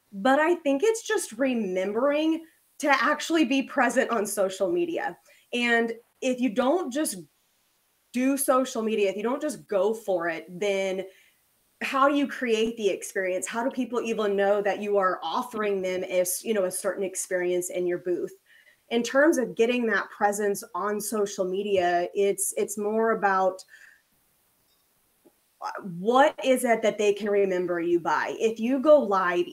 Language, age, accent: English, 20-39, American